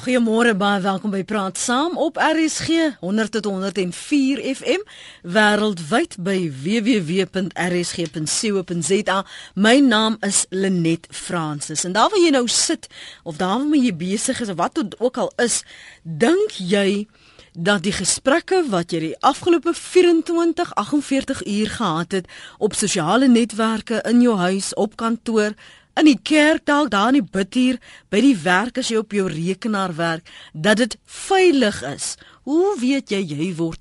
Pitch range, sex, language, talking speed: 180-260 Hz, female, Dutch, 145 wpm